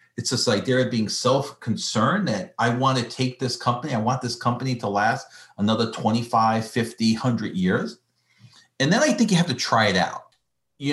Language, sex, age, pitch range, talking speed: English, male, 40-59, 110-155 Hz, 190 wpm